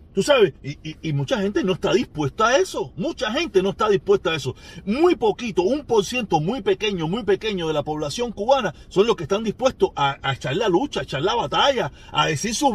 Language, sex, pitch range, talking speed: Spanish, male, 190-285 Hz, 230 wpm